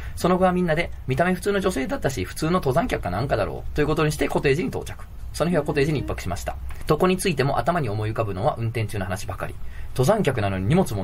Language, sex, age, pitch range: Japanese, male, 20-39, 100-145 Hz